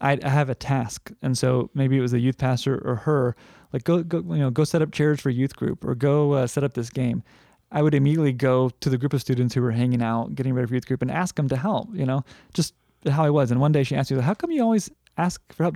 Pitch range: 125-155 Hz